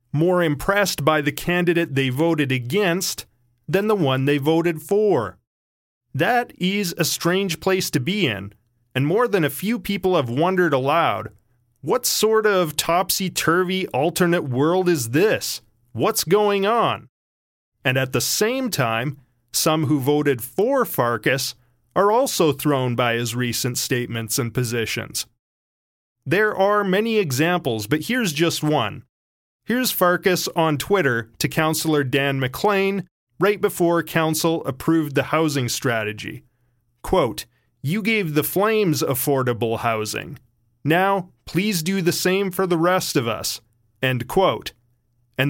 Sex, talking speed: male, 135 wpm